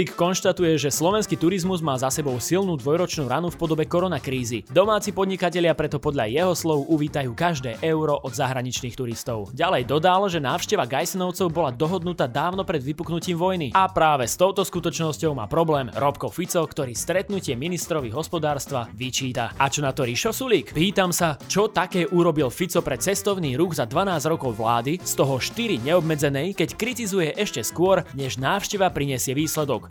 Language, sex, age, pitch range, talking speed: Slovak, male, 20-39, 135-180 Hz, 160 wpm